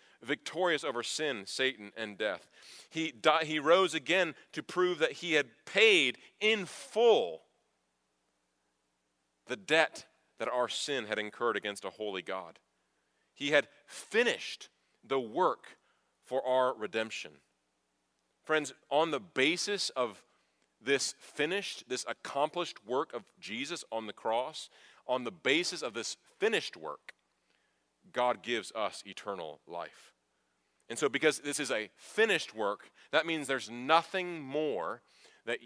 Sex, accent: male, American